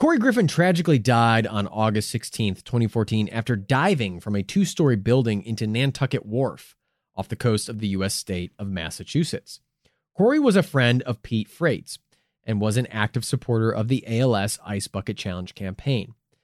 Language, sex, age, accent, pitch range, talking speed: English, male, 30-49, American, 100-140 Hz, 165 wpm